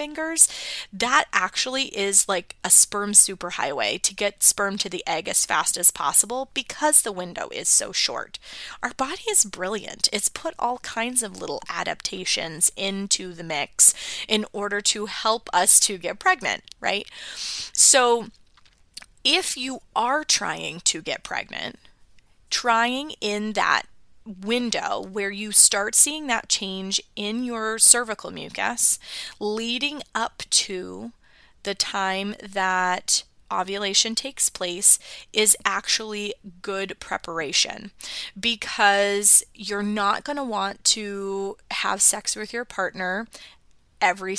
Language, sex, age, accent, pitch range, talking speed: English, female, 20-39, American, 195-250 Hz, 130 wpm